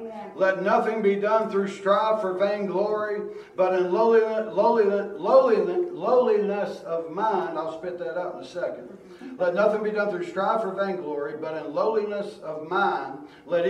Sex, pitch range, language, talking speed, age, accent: male, 195-235 Hz, English, 150 wpm, 60-79, American